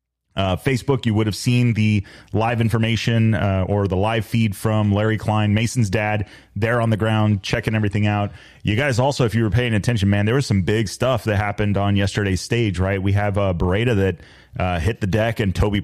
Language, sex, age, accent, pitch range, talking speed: English, male, 30-49, American, 100-120 Hz, 220 wpm